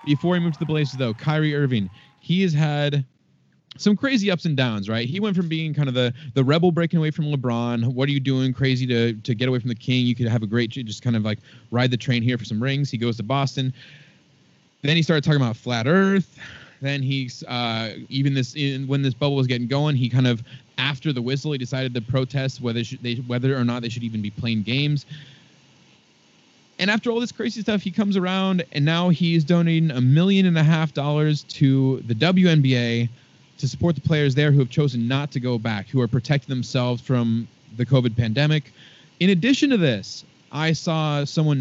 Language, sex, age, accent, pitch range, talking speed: English, male, 20-39, American, 125-155 Hz, 220 wpm